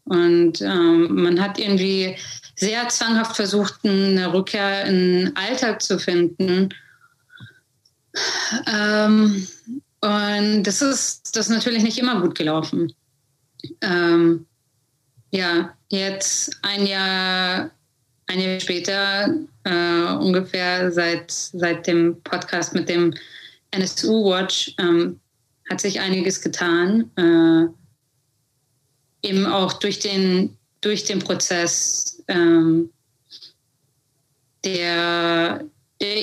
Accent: German